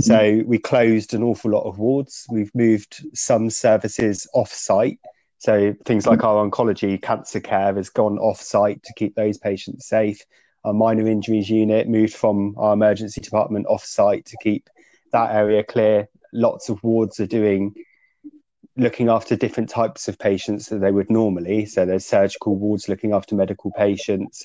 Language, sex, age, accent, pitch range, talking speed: English, male, 20-39, British, 105-115 Hz, 170 wpm